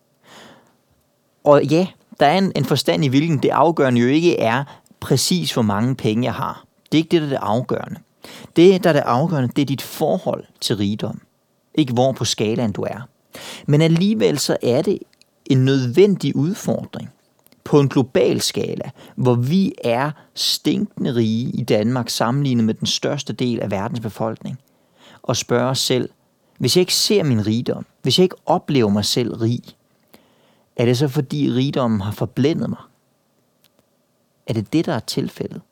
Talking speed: 170 wpm